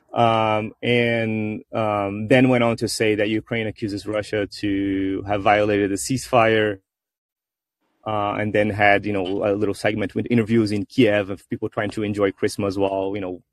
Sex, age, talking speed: male, 30-49, 175 wpm